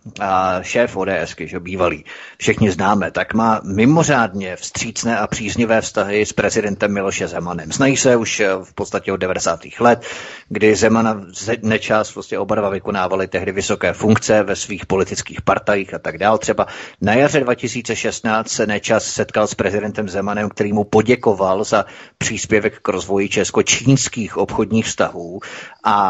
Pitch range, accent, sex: 105-130 Hz, native, male